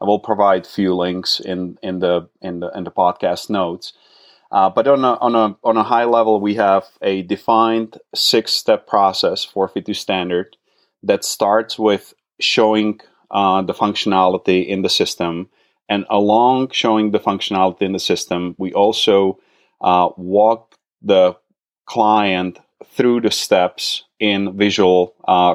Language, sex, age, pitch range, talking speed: English, male, 30-49, 90-105 Hz, 150 wpm